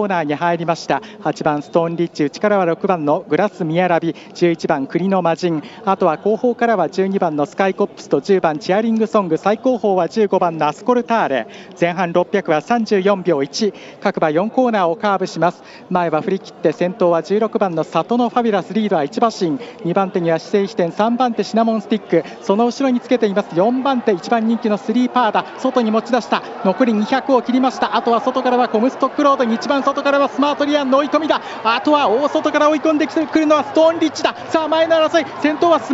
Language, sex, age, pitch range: Japanese, male, 40-59, 200-315 Hz